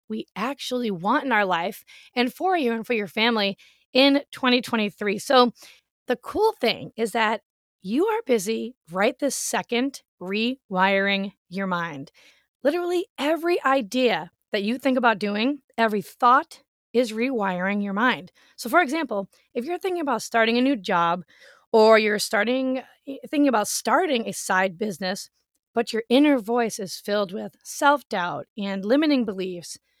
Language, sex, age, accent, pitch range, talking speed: English, female, 20-39, American, 215-280 Hz, 150 wpm